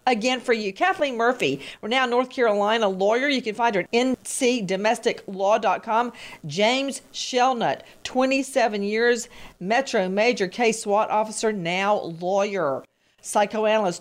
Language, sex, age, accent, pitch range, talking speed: English, female, 50-69, American, 190-240 Hz, 110 wpm